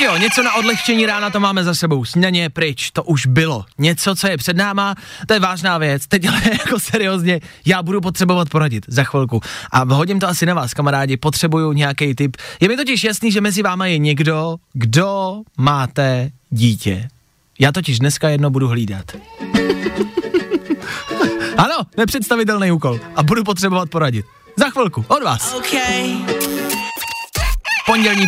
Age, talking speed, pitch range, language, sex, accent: 20-39, 155 wpm, 135-205 Hz, Czech, male, native